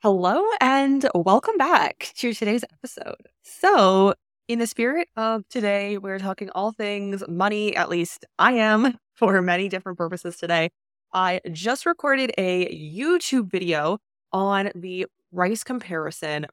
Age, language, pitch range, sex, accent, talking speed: 20-39, English, 170-225 Hz, female, American, 135 wpm